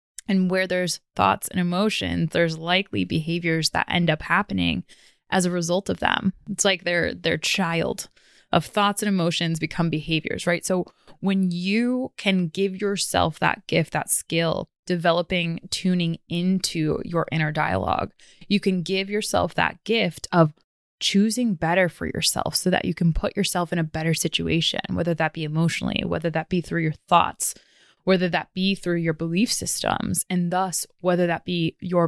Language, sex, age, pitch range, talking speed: English, female, 20-39, 165-190 Hz, 165 wpm